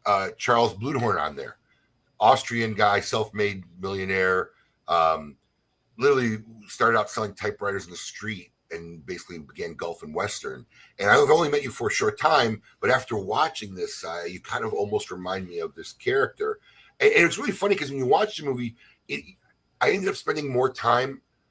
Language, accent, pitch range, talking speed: English, American, 105-150 Hz, 180 wpm